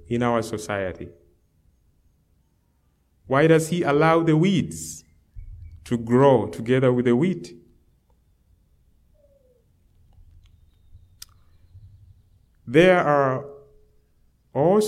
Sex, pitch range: male, 85-130 Hz